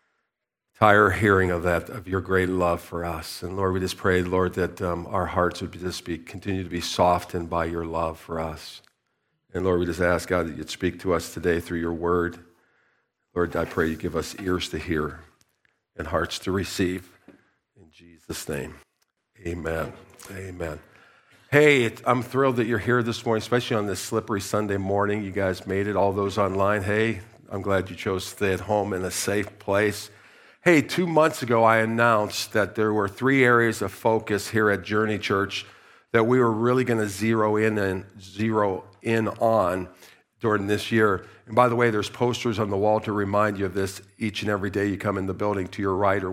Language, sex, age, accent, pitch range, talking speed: English, male, 50-69, American, 90-115 Hz, 200 wpm